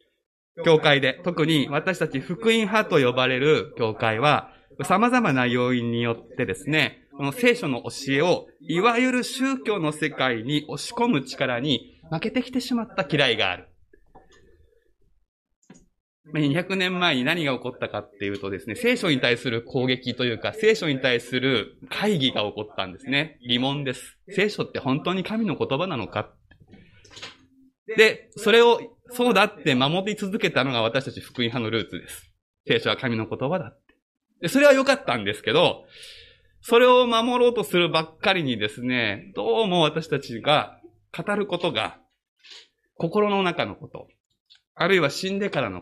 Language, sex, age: Japanese, male, 20-39